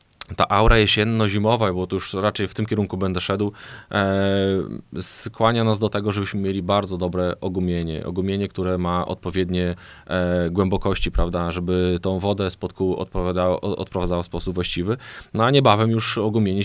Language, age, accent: Polish, 20-39, native